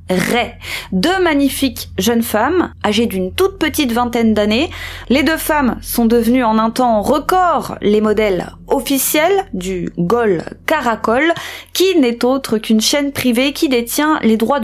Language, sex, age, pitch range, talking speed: French, female, 30-49, 215-285 Hz, 145 wpm